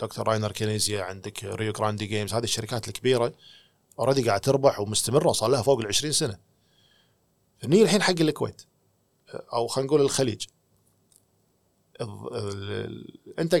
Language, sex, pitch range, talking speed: Arabic, male, 115-160 Hz, 130 wpm